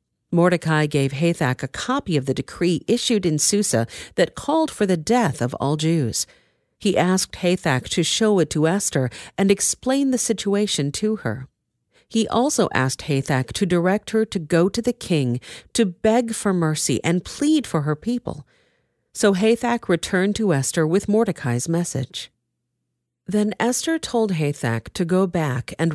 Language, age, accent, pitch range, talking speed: English, 50-69, American, 150-205 Hz, 160 wpm